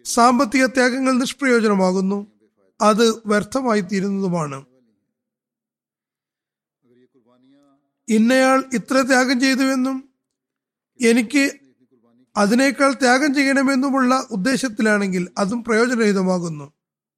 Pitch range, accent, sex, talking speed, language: 195-255 Hz, native, male, 55 wpm, Malayalam